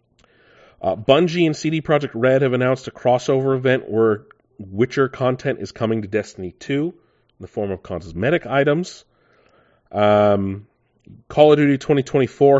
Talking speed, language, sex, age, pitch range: 140 wpm, English, male, 30-49, 95-120 Hz